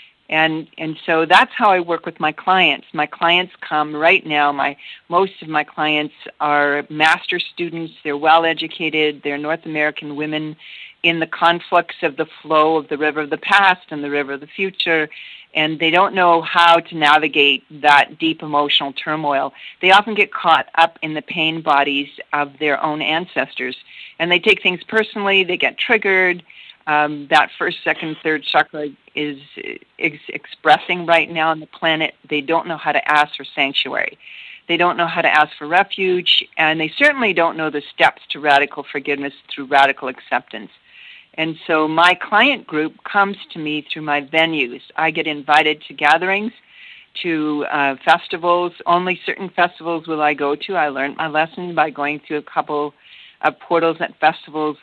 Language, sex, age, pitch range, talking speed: English, female, 50-69, 150-170 Hz, 175 wpm